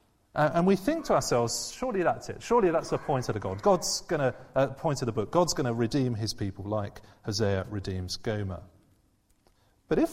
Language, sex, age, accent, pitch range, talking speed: English, male, 30-49, British, 105-155 Hz, 205 wpm